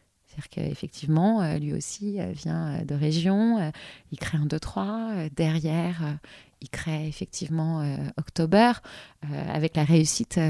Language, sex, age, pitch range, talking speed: French, female, 30-49, 160-210 Hz, 110 wpm